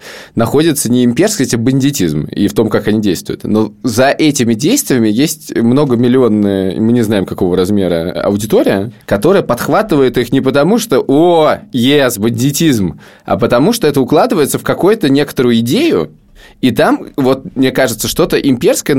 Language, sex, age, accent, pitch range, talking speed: Russian, male, 20-39, native, 100-140 Hz, 155 wpm